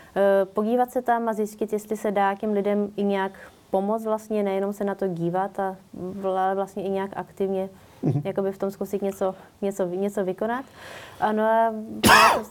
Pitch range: 195-220 Hz